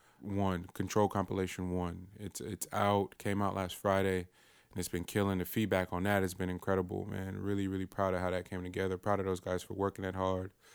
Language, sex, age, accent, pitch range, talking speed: English, male, 20-39, American, 90-105 Hz, 220 wpm